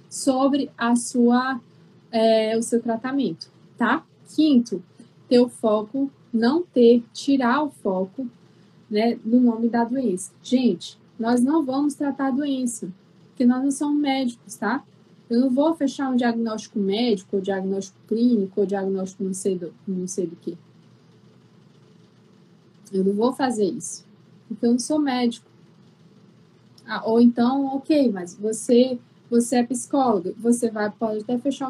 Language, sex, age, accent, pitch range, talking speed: Portuguese, female, 20-39, Brazilian, 200-250 Hz, 145 wpm